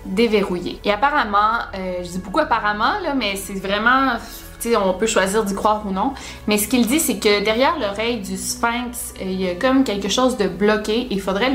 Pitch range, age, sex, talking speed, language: 195-235 Hz, 20-39, female, 205 wpm, French